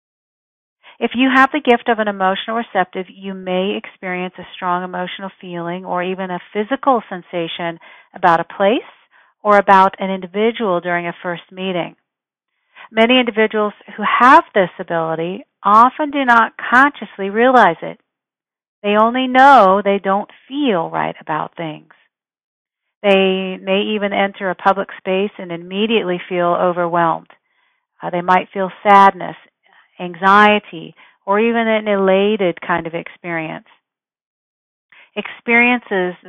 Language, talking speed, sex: English, 130 wpm, female